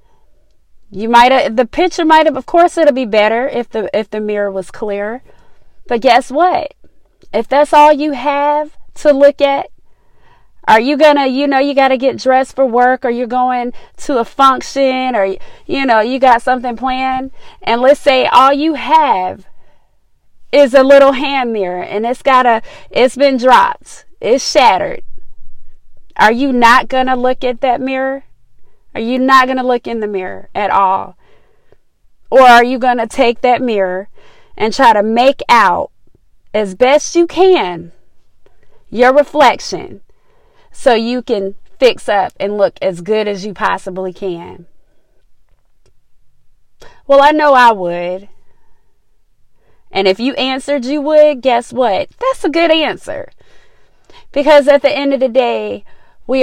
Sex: female